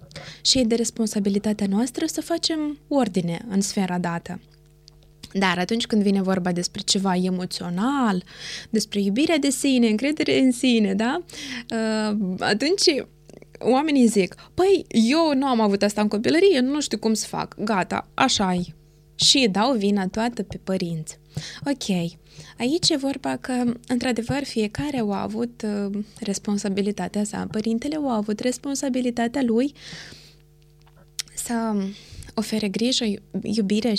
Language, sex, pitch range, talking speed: Romanian, female, 190-245 Hz, 130 wpm